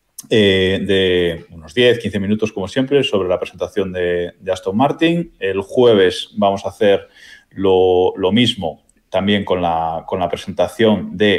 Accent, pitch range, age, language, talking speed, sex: Spanish, 90-120 Hz, 20-39, Spanish, 150 wpm, male